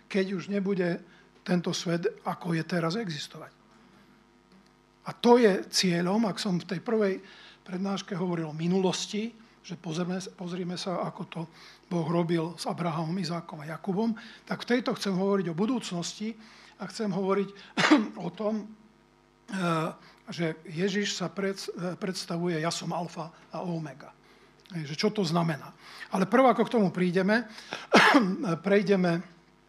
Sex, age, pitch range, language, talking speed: male, 50-69, 170-205 Hz, Slovak, 135 wpm